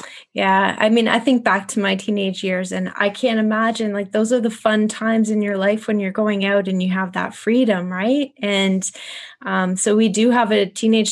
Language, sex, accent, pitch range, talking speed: English, female, American, 190-225 Hz, 220 wpm